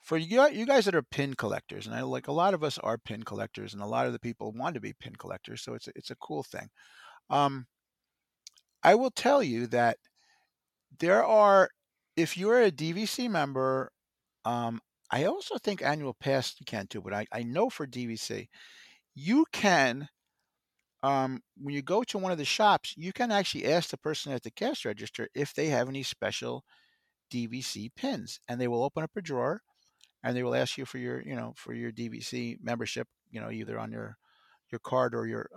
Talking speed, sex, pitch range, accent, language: 210 wpm, male, 120-185 Hz, American, English